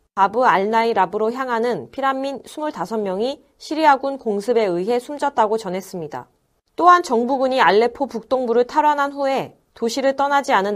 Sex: female